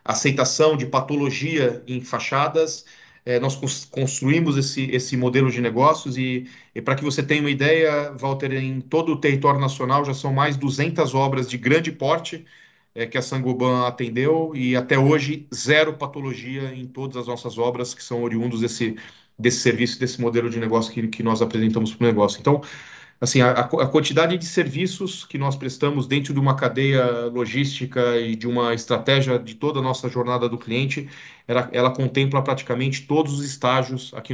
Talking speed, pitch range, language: 170 wpm, 125-145 Hz, Portuguese